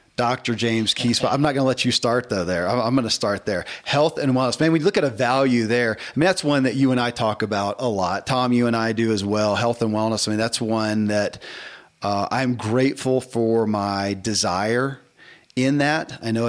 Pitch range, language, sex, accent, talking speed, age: 110-130 Hz, English, male, American, 235 wpm, 40-59